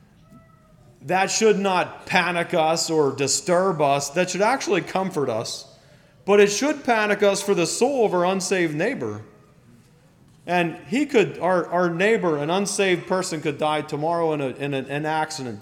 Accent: American